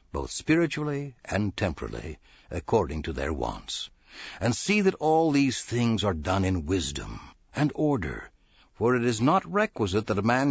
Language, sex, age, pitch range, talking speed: English, male, 60-79, 100-150 Hz, 160 wpm